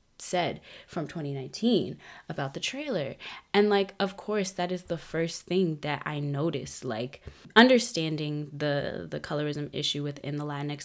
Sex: female